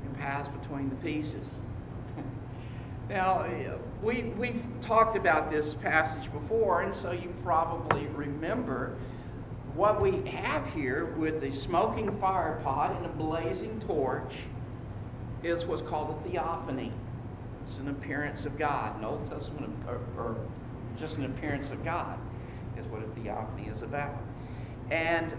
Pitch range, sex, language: 120-150 Hz, male, English